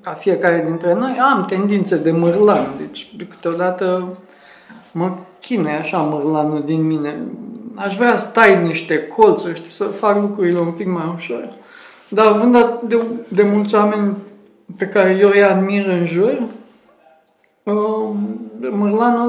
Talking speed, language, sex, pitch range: 135 wpm, Romanian, male, 180-225 Hz